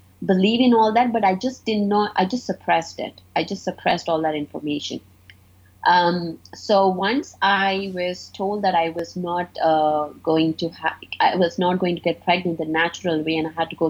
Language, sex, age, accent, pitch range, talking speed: English, female, 30-49, Indian, 160-190 Hz, 205 wpm